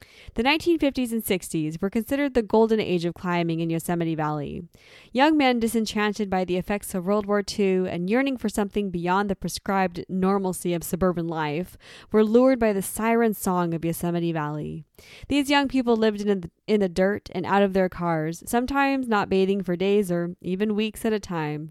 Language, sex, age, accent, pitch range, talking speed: English, female, 10-29, American, 175-220 Hz, 190 wpm